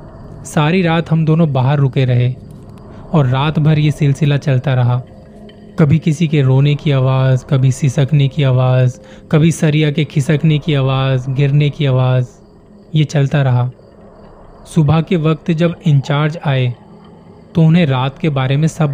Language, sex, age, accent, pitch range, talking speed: Hindi, male, 20-39, native, 130-160 Hz, 155 wpm